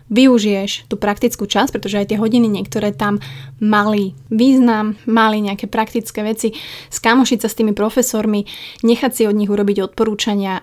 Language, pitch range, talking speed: Slovak, 200-225 Hz, 155 wpm